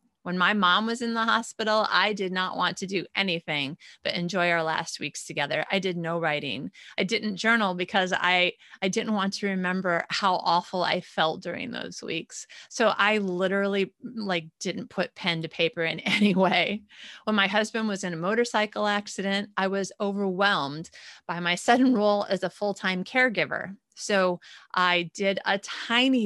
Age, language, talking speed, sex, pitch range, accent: 30-49, English, 175 wpm, female, 175-210 Hz, American